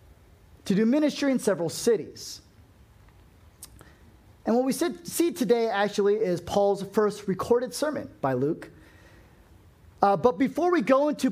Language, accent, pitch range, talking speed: English, American, 150-225 Hz, 135 wpm